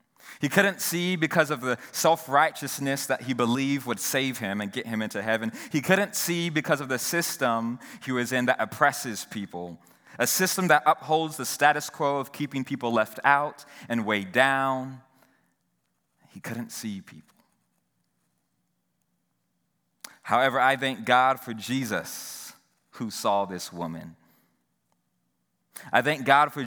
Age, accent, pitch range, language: 30-49, American, 115-145 Hz, English